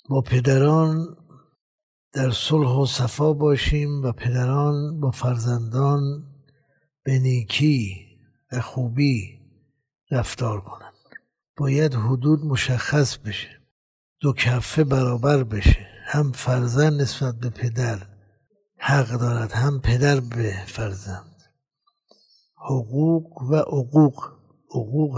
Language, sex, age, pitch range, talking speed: Persian, male, 60-79, 120-145 Hz, 95 wpm